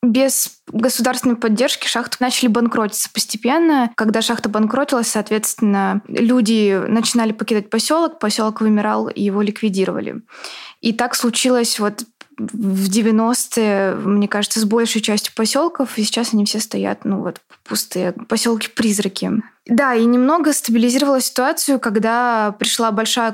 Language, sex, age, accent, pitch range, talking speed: Russian, female, 20-39, native, 205-235 Hz, 125 wpm